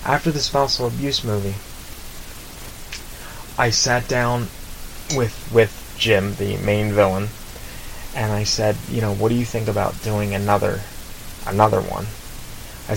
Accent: American